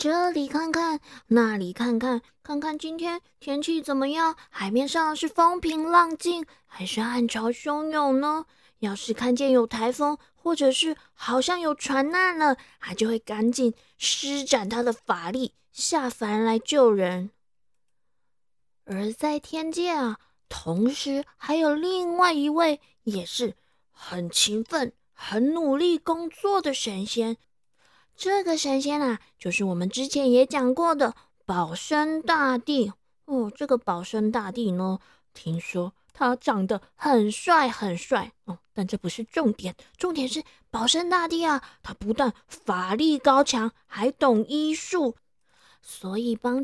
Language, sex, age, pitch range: Chinese, female, 20-39, 225-310 Hz